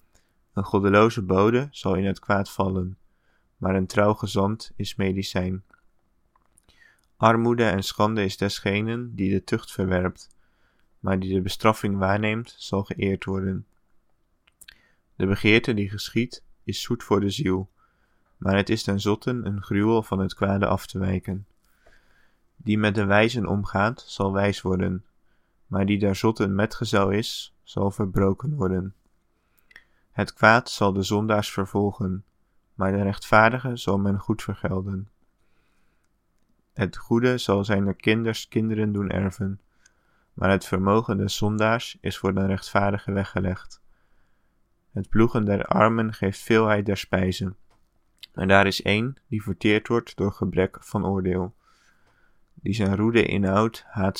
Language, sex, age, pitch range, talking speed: English, male, 20-39, 95-105 Hz, 140 wpm